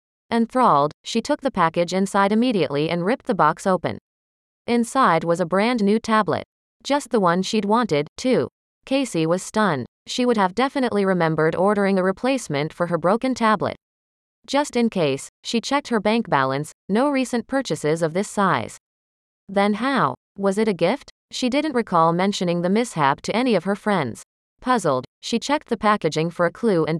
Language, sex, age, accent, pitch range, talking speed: English, female, 30-49, American, 170-235 Hz, 175 wpm